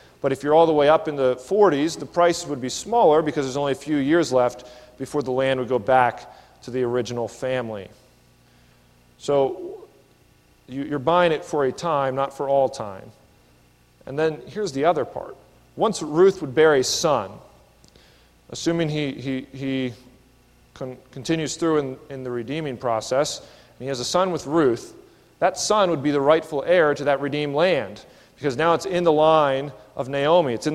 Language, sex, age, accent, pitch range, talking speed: English, male, 40-59, American, 130-155 Hz, 185 wpm